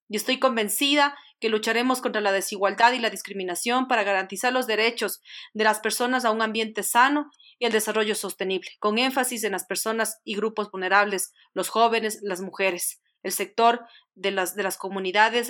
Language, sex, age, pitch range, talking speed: Spanish, female, 40-59, 200-235 Hz, 170 wpm